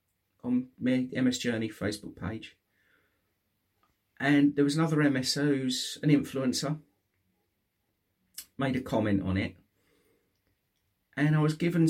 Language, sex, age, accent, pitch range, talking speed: English, male, 40-59, British, 100-150 Hz, 110 wpm